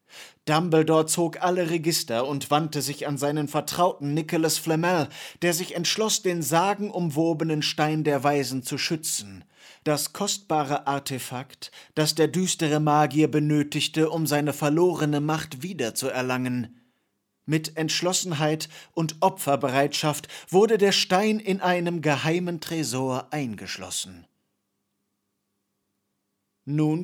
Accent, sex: German, male